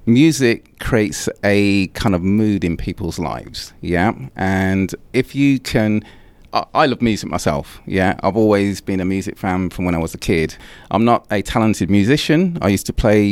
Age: 30-49